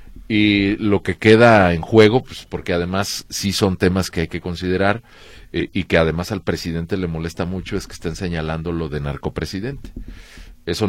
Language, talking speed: Spanish, 180 wpm